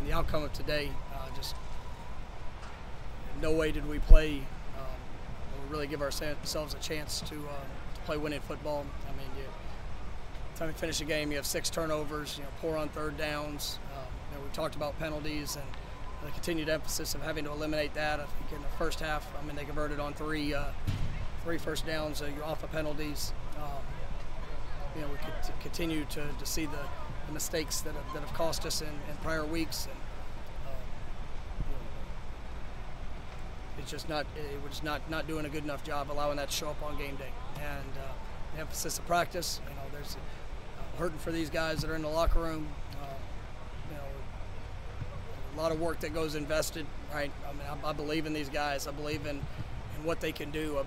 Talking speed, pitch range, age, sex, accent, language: 205 wpm, 140-155 Hz, 30-49, male, American, English